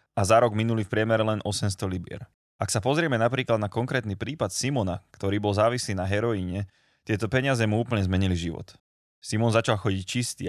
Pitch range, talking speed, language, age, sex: 95-120 Hz, 175 wpm, Slovak, 20-39, male